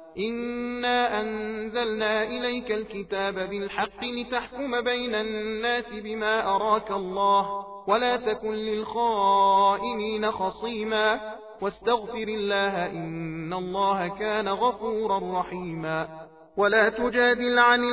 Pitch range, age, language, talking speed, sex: 195-245 Hz, 40-59, Persian, 85 wpm, male